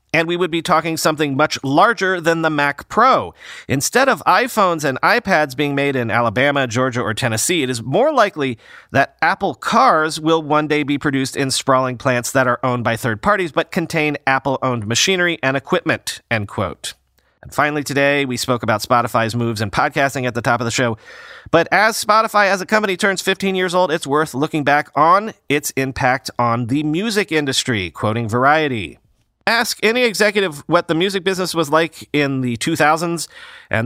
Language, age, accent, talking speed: English, 40-59, American, 185 wpm